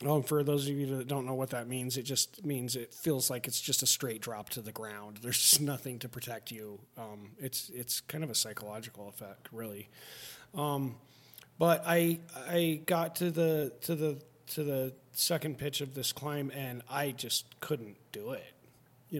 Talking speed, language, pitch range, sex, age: 195 wpm, English, 125-160 Hz, male, 30-49